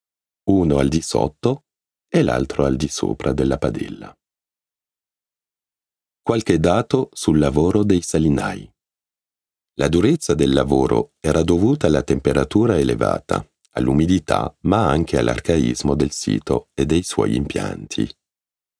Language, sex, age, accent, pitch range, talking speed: Italian, male, 40-59, native, 70-90 Hz, 115 wpm